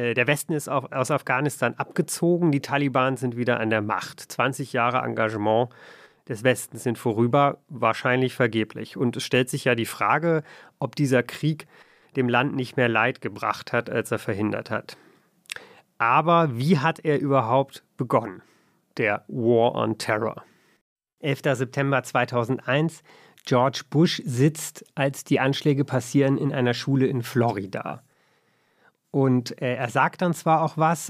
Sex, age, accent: male, 30-49, German